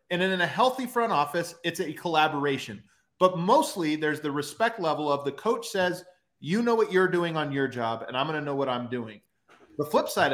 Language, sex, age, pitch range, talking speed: English, male, 30-49, 135-185 Hz, 220 wpm